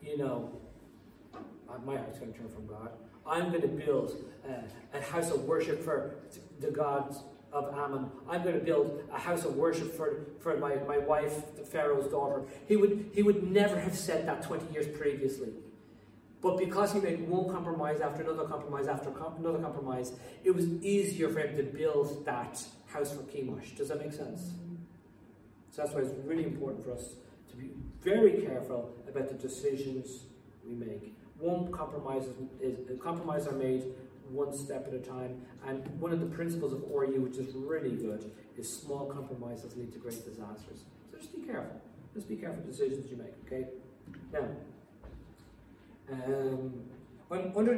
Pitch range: 130-170 Hz